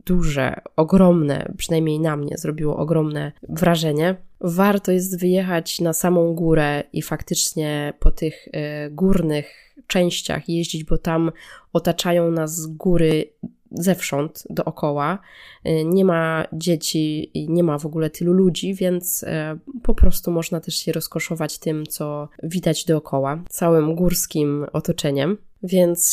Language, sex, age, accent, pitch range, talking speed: Polish, female, 20-39, native, 155-185 Hz, 120 wpm